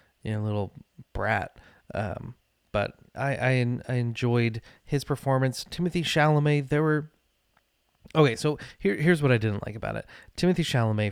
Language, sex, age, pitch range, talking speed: English, male, 30-49, 115-140 Hz, 155 wpm